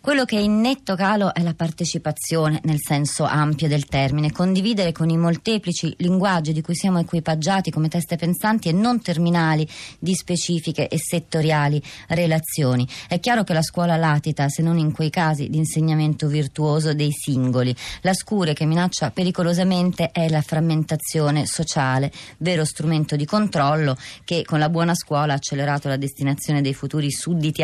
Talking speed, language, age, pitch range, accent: 165 wpm, Italian, 30-49, 145-175 Hz, native